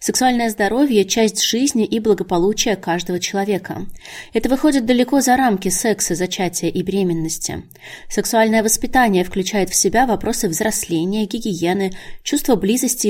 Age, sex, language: 20-39, female, Russian